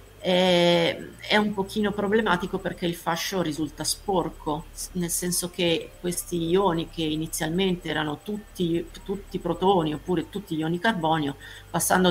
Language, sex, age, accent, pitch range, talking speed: Italian, female, 40-59, native, 150-180 Hz, 130 wpm